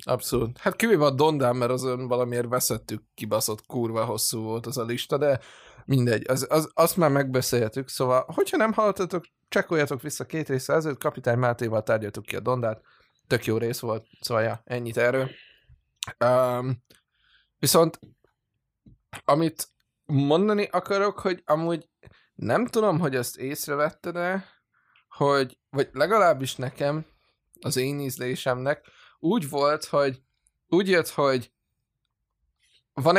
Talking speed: 130 wpm